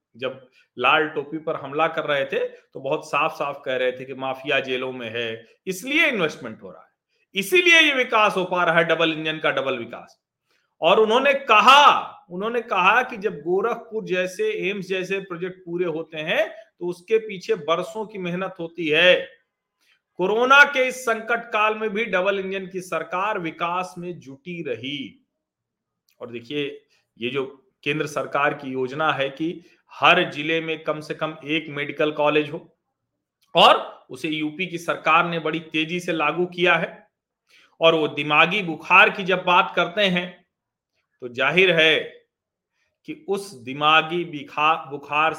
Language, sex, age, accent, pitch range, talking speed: Hindi, male, 40-59, native, 155-230 Hz, 165 wpm